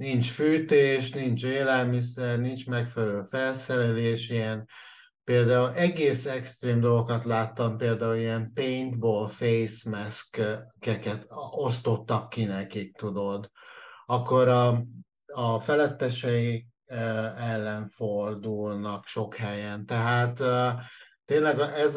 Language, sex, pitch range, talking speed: Hungarian, male, 110-125 Hz, 90 wpm